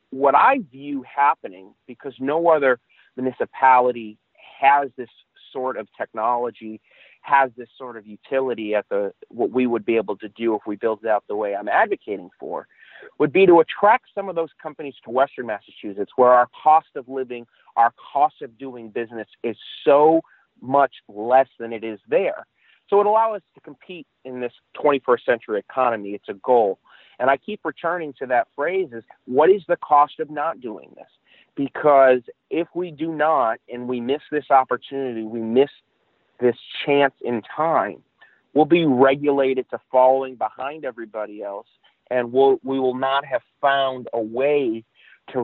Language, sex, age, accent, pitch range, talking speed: English, male, 40-59, American, 115-145 Hz, 175 wpm